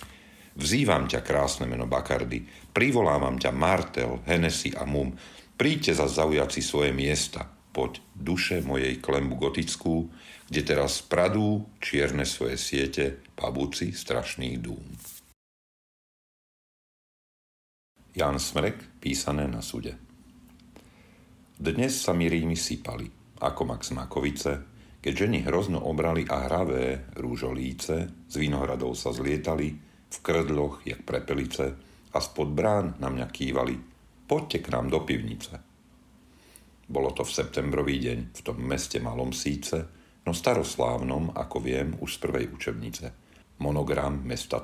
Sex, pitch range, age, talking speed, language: male, 65-80 Hz, 50-69, 120 wpm, Slovak